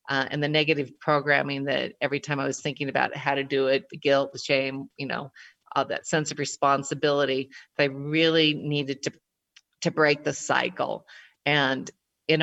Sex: female